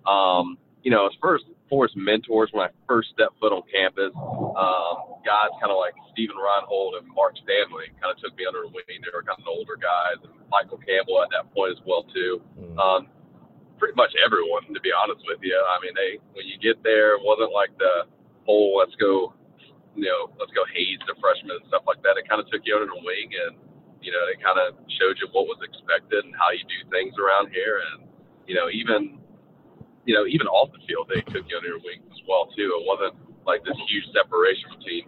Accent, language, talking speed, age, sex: American, English, 230 wpm, 40-59, male